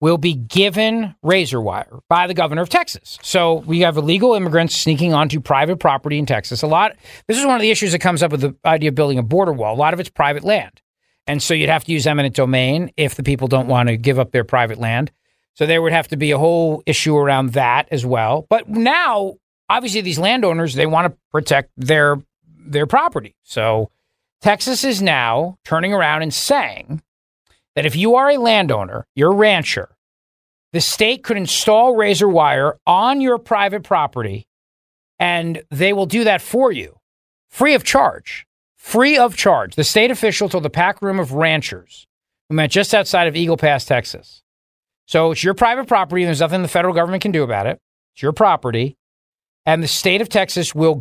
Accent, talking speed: American, 200 wpm